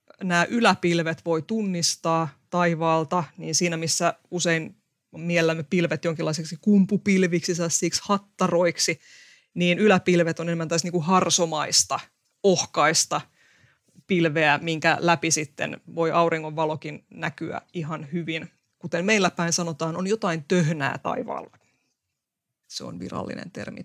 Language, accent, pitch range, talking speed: Finnish, native, 170-195 Hz, 110 wpm